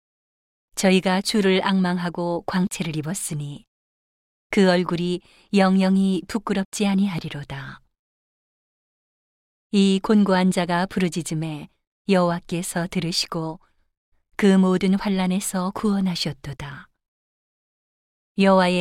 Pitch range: 165-190 Hz